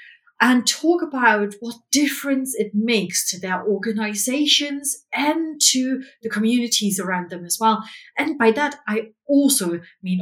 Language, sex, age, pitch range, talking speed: English, female, 30-49, 190-255 Hz, 140 wpm